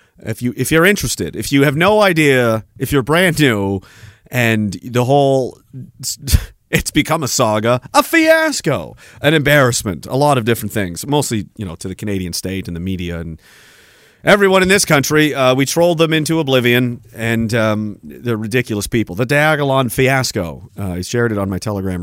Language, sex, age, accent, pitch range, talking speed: English, male, 40-59, American, 110-155 Hz, 185 wpm